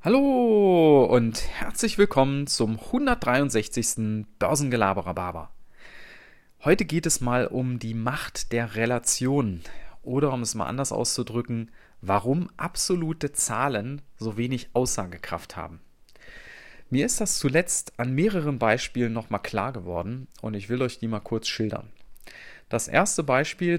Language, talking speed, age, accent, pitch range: German, 130 wpm, 30-49, German, 110-140 Hz